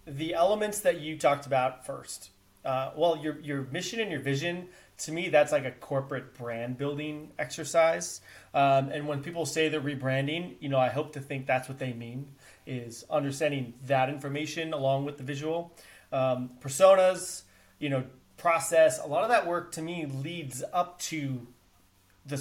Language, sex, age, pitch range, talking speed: English, male, 30-49, 135-160 Hz, 175 wpm